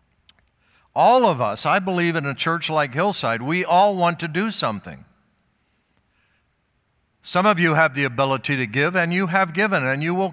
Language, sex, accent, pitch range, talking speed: English, male, American, 135-175 Hz, 180 wpm